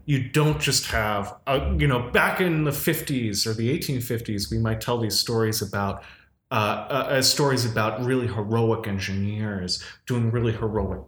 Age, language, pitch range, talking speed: 30-49, English, 105-130 Hz, 170 wpm